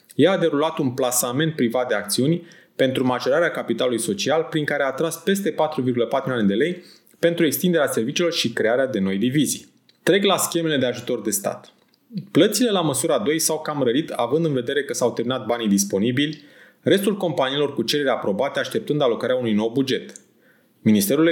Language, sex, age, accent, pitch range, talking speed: Romanian, male, 20-39, native, 125-170 Hz, 175 wpm